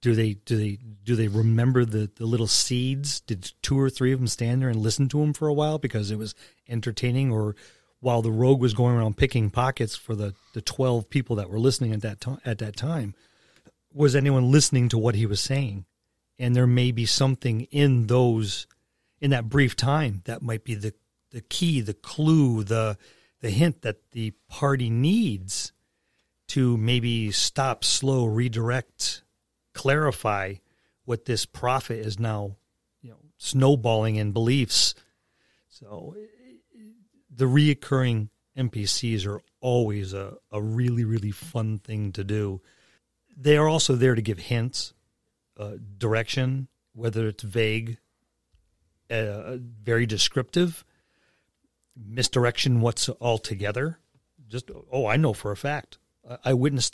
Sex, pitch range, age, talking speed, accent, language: male, 110-135 Hz, 40-59, 155 wpm, American, English